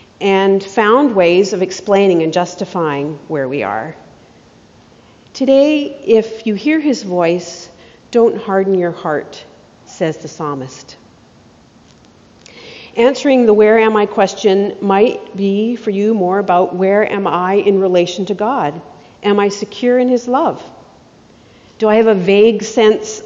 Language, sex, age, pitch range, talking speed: English, female, 50-69, 180-240 Hz, 140 wpm